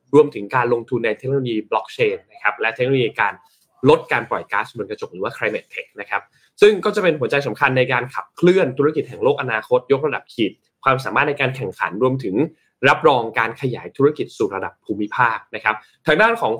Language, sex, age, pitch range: Thai, male, 20-39, 115-180 Hz